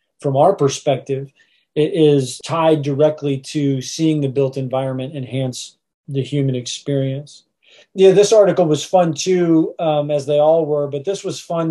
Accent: American